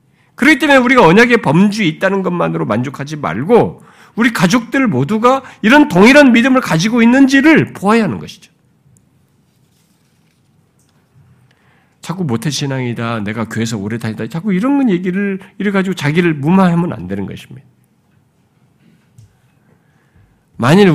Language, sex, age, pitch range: Korean, male, 50-69, 115-180 Hz